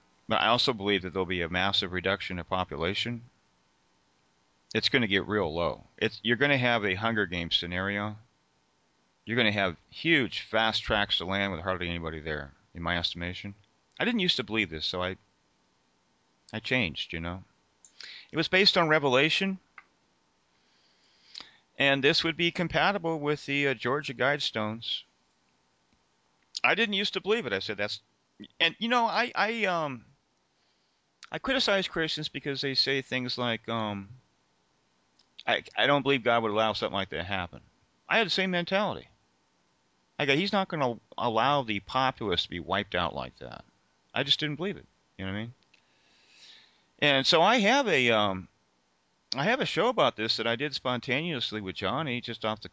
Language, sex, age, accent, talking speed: English, male, 40-59, American, 180 wpm